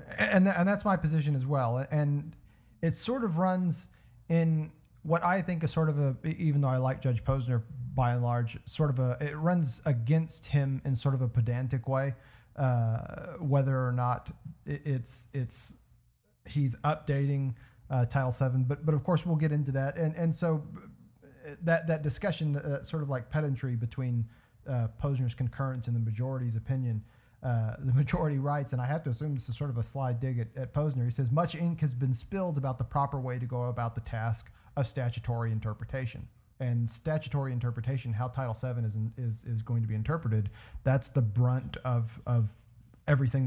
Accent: American